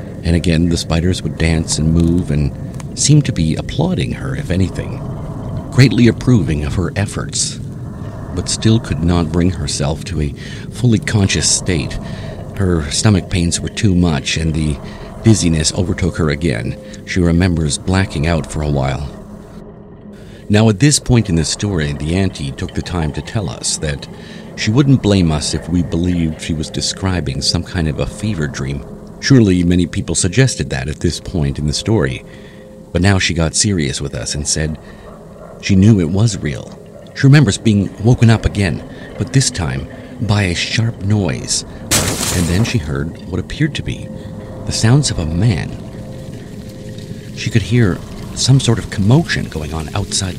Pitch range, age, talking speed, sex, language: 80-110 Hz, 50-69, 170 wpm, male, English